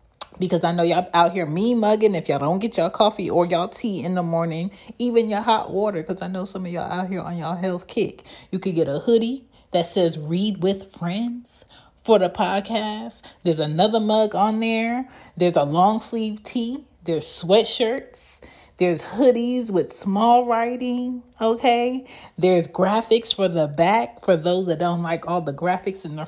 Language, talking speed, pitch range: English, 185 wpm, 180-230 Hz